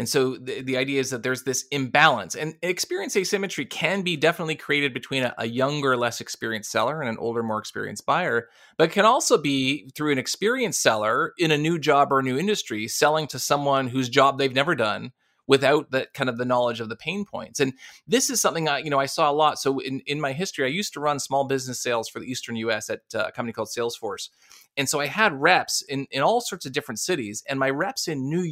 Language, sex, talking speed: English, male, 240 wpm